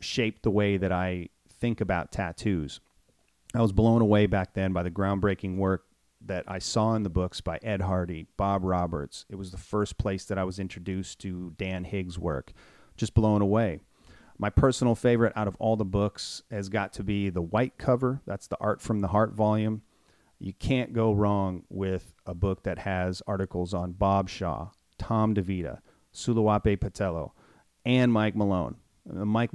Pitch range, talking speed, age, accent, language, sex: 95-110 Hz, 180 wpm, 40-59, American, English, male